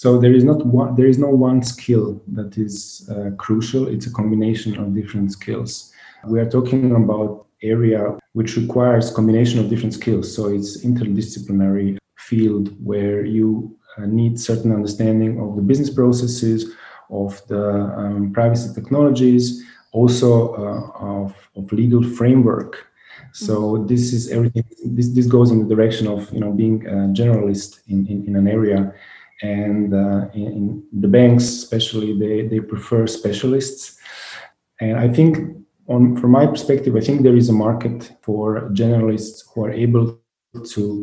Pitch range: 105-120 Hz